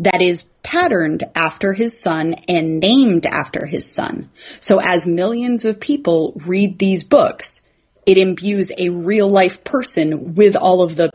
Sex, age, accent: female, 30-49, American